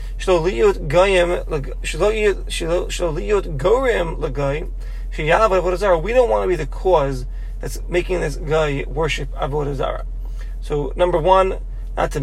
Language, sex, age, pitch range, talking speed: English, male, 30-49, 150-195 Hz, 90 wpm